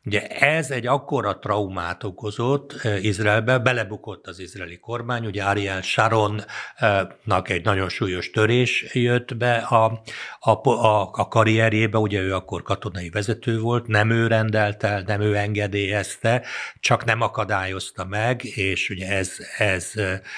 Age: 60-79